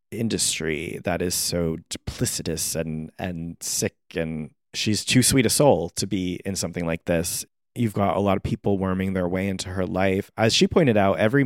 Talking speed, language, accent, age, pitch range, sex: 195 wpm, English, American, 30-49, 90-105 Hz, male